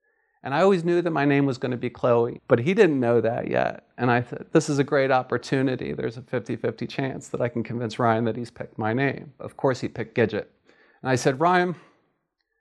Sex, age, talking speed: male, 40-59, 230 wpm